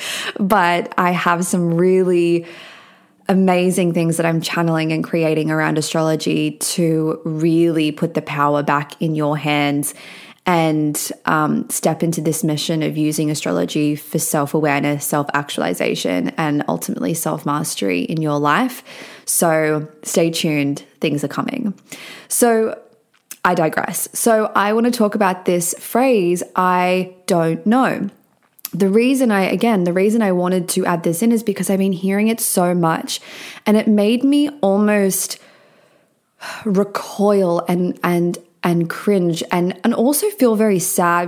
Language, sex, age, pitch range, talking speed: English, female, 20-39, 165-205 Hz, 140 wpm